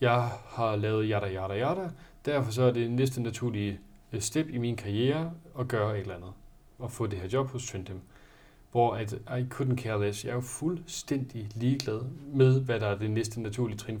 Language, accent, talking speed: Danish, native, 200 wpm